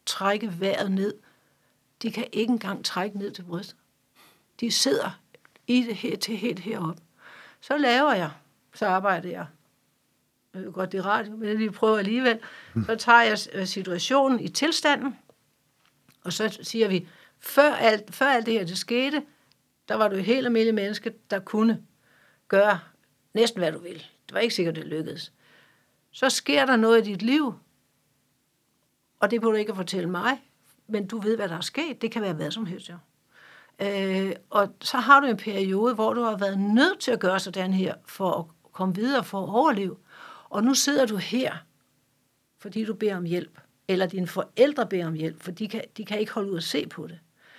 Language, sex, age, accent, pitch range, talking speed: Danish, female, 60-79, native, 185-235 Hz, 195 wpm